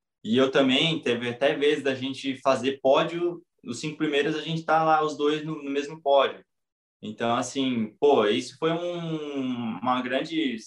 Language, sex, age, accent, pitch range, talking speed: Portuguese, male, 20-39, Brazilian, 110-145 Hz, 175 wpm